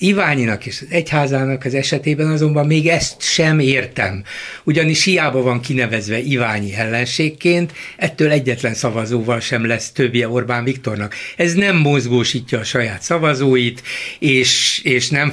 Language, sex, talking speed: Hungarian, male, 135 wpm